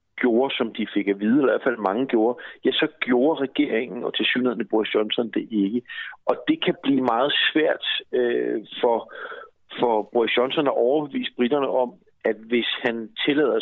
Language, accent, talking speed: Danish, native, 185 wpm